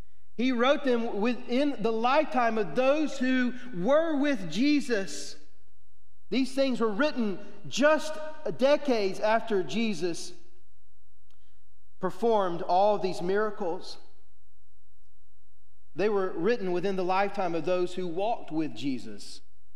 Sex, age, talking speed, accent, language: male, 40-59, 110 wpm, American, English